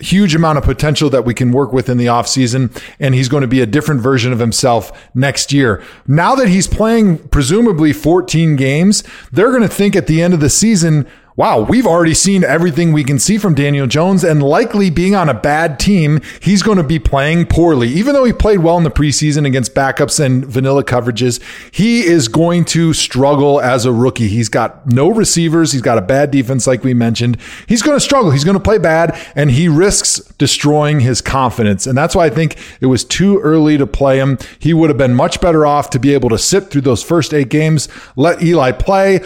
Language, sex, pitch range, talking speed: English, male, 135-175 Hz, 225 wpm